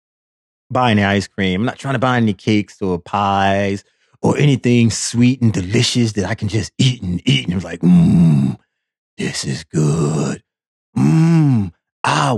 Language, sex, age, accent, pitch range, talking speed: English, male, 30-49, American, 100-145 Hz, 170 wpm